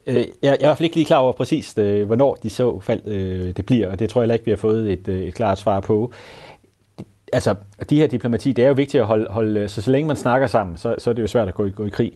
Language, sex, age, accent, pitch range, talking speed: Danish, male, 30-49, native, 95-115 Hz, 285 wpm